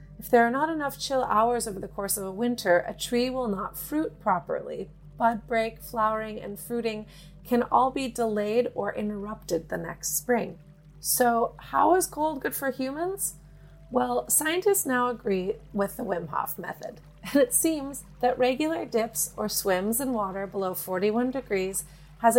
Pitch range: 185-255 Hz